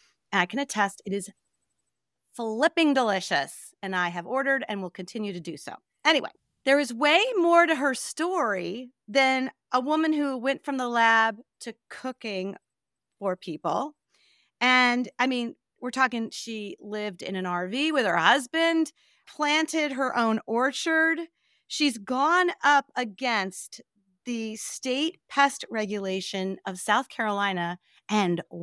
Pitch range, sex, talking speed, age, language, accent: 195-275 Hz, female, 140 wpm, 40-59, English, American